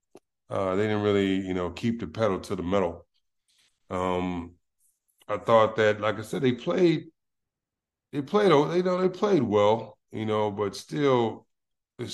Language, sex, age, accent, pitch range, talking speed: English, male, 30-49, American, 95-120 Hz, 175 wpm